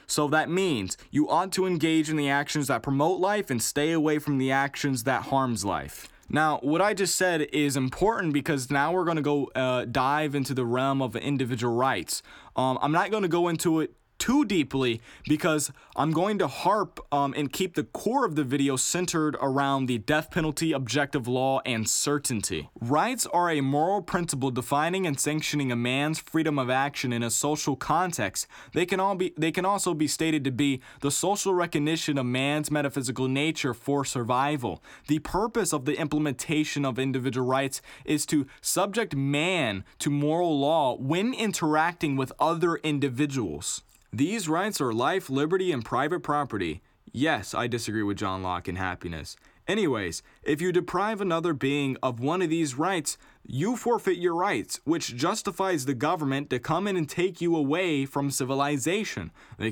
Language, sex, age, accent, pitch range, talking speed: English, male, 20-39, American, 130-165 Hz, 175 wpm